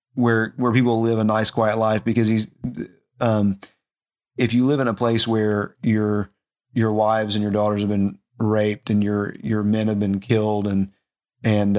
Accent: American